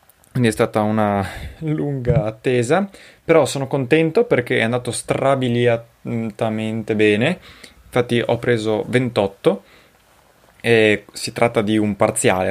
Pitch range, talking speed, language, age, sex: 100-125 Hz, 115 wpm, Italian, 20-39, male